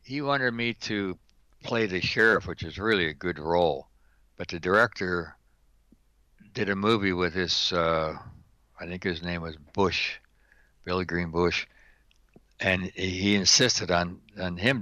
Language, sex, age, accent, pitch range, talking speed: English, male, 60-79, American, 85-110 Hz, 150 wpm